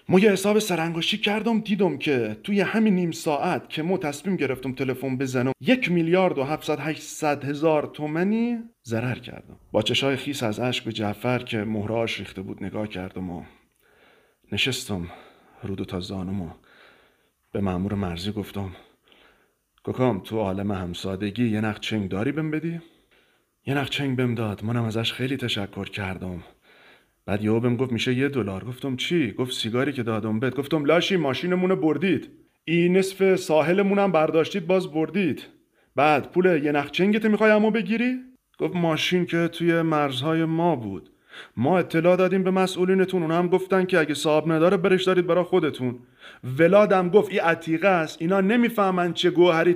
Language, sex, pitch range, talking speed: Persian, male, 115-185 Hz, 160 wpm